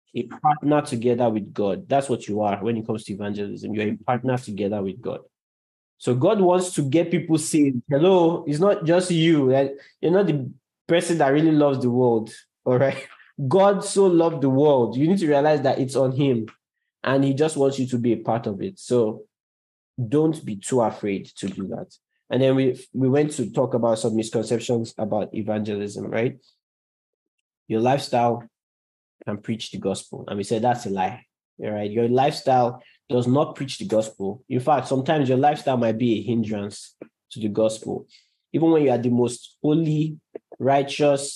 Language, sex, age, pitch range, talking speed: English, male, 20-39, 110-145 Hz, 185 wpm